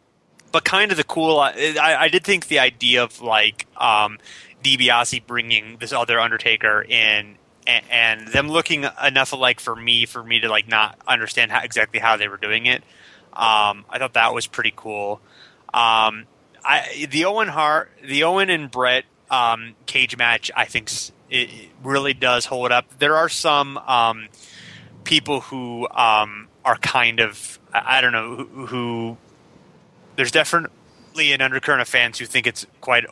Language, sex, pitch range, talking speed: English, male, 110-135 Hz, 165 wpm